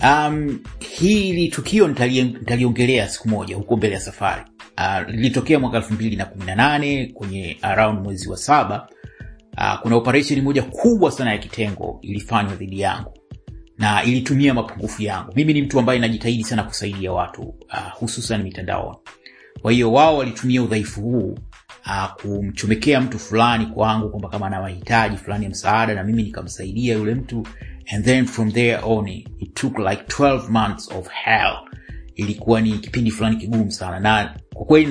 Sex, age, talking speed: male, 30-49, 150 wpm